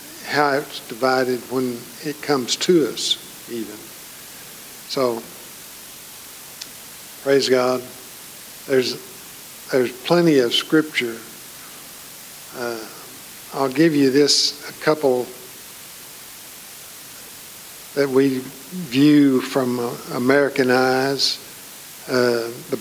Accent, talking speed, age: American, 85 wpm, 50-69